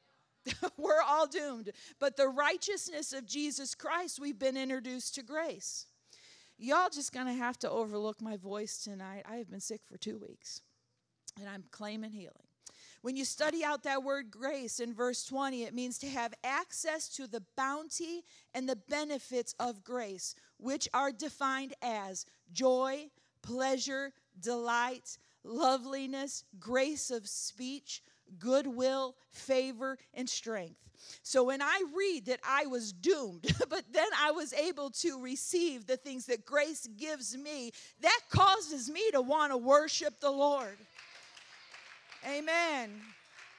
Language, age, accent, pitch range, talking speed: English, 40-59, American, 245-295 Hz, 145 wpm